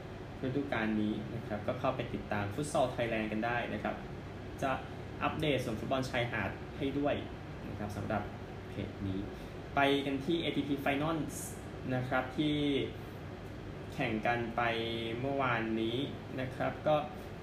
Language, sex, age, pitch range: Thai, male, 20-39, 115-140 Hz